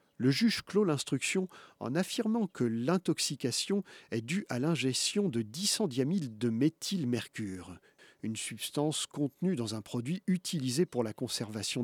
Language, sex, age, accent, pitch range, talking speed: French, male, 40-59, French, 115-175 Hz, 135 wpm